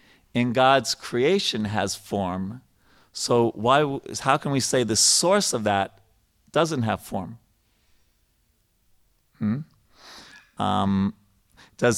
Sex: male